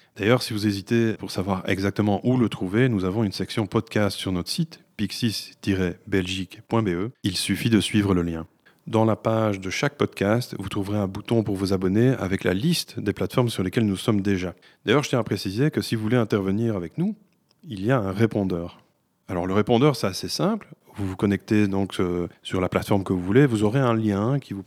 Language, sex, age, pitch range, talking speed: French, male, 30-49, 95-120 Hz, 210 wpm